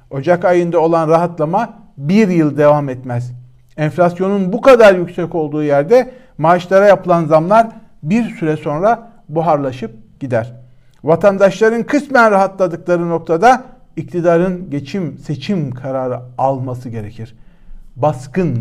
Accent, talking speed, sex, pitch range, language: native, 105 wpm, male, 145-185 Hz, Turkish